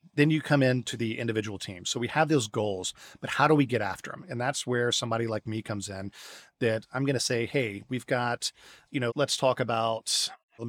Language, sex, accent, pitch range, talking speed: English, male, American, 105-125 Hz, 235 wpm